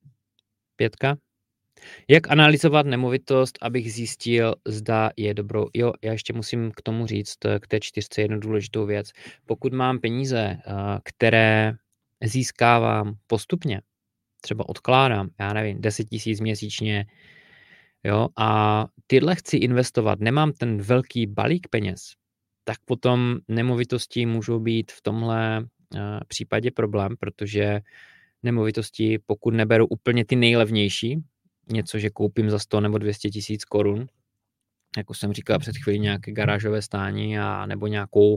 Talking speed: 125 wpm